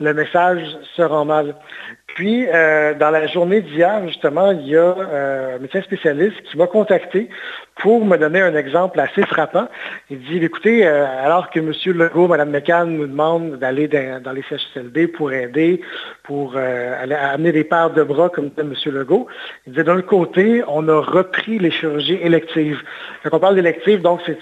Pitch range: 150-180 Hz